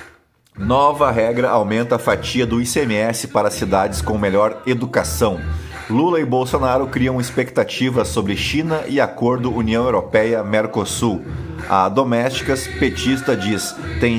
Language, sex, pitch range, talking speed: Portuguese, male, 105-130 Hz, 120 wpm